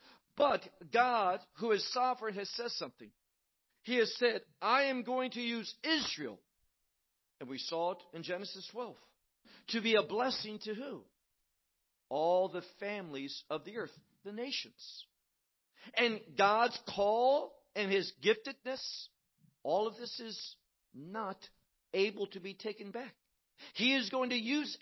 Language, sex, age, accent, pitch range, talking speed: English, male, 50-69, American, 195-250 Hz, 145 wpm